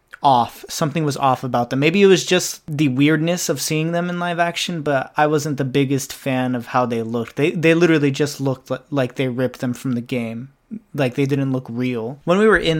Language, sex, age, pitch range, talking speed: English, male, 20-39, 130-155 Hz, 235 wpm